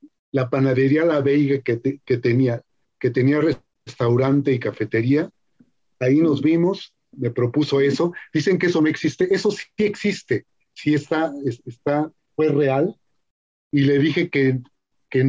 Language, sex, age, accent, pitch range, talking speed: English, male, 40-59, Mexican, 130-155 Hz, 145 wpm